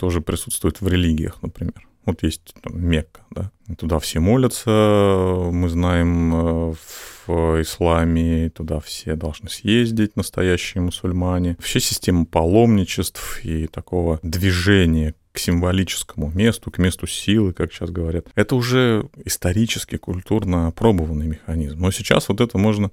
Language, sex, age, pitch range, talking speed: Russian, male, 30-49, 80-105 Hz, 130 wpm